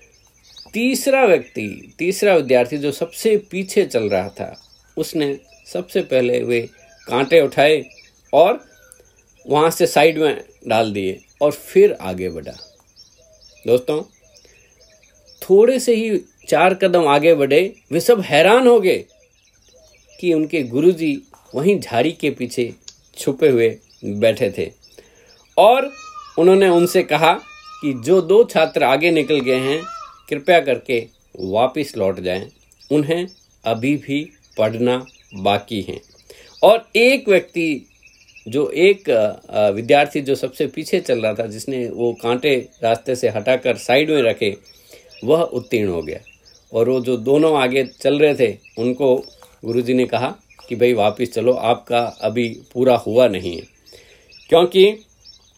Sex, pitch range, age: male, 125-205 Hz, 50-69